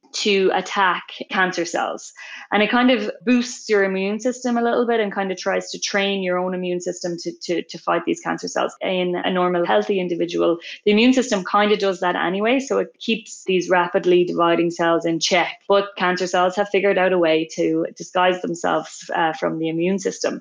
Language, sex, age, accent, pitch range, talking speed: English, female, 20-39, Irish, 175-205 Hz, 205 wpm